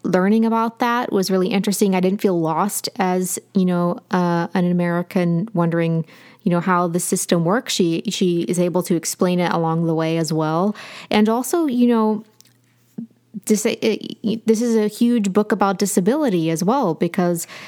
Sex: female